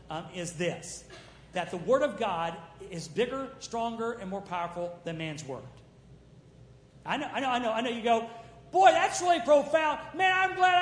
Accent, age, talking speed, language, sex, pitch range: American, 50-69, 190 wpm, English, male, 215-320 Hz